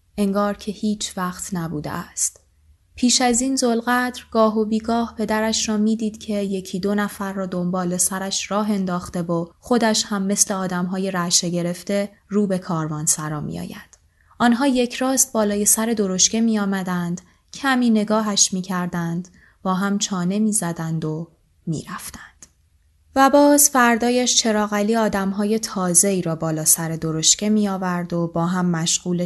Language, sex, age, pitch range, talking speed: Persian, female, 20-39, 170-220 Hz, 150 wpm